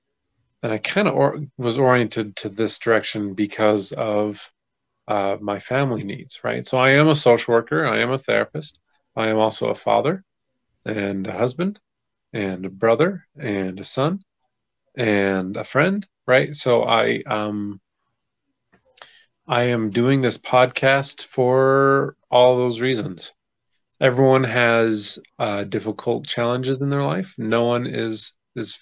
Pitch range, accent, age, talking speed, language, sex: 105-130 Hz, American, 30-49, 145 wpm, English, male